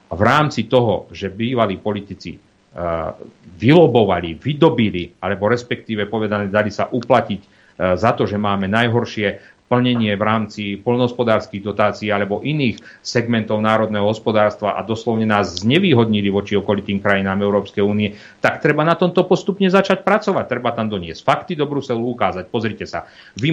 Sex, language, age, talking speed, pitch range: male, Slovak, 40-59, 145 wpm, 100-130 Hz